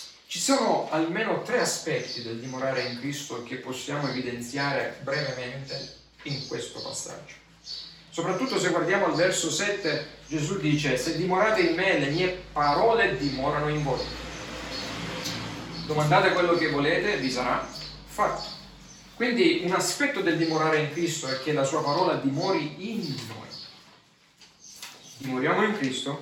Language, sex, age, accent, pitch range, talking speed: Italian, male, 40-59, native, 135-180 Hz, 135 wpm